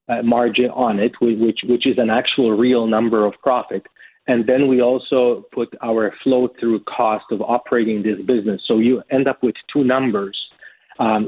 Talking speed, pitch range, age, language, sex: 180 wpm, 110-125 Hz, 30-49, English, male